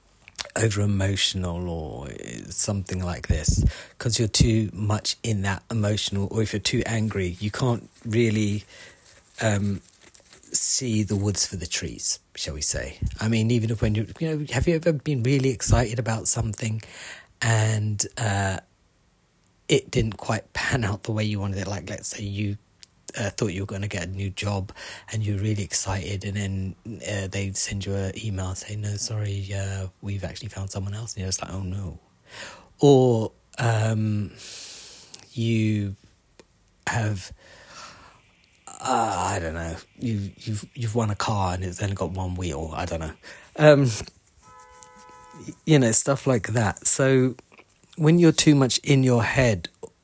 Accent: British